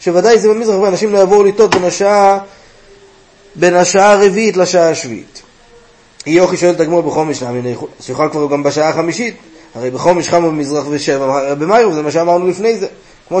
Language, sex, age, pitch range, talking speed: Hebrew, male, 30-49, 170-210 Hz, 155 wpm